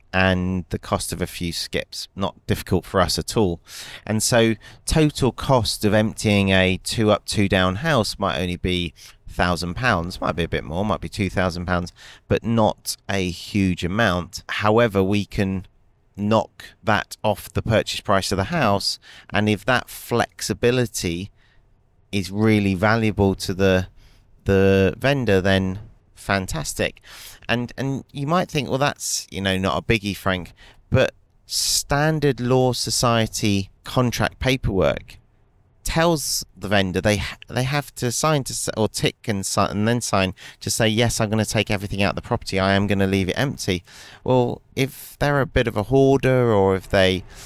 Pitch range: 95-115 Hz